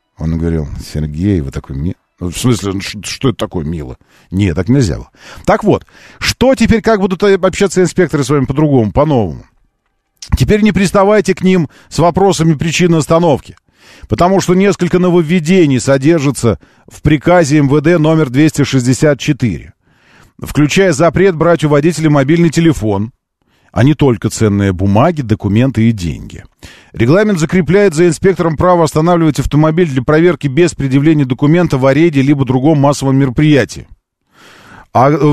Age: 40-59